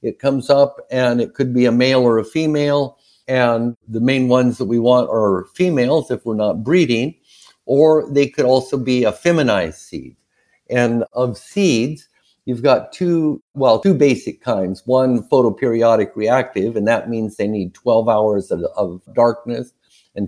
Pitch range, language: 105-130 Hz, English